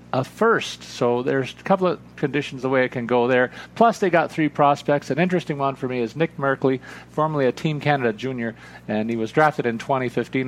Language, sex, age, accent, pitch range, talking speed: English, male, 40-59, American, 120-145 Hz, 220 wpm